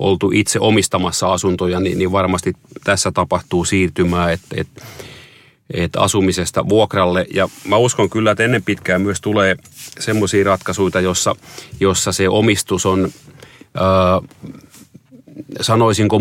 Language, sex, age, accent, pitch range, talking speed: Finnish, male, 30-49, native, 95-110 Hz, 105 wpm